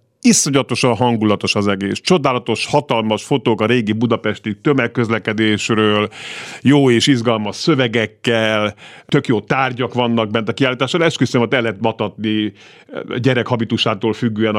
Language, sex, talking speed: Hungarian, male, 115 wpm